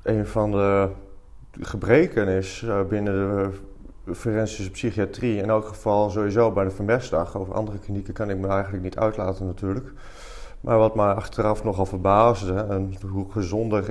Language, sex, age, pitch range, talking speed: Dutch, male, 30-49, 95-115 Hz, 150 wpm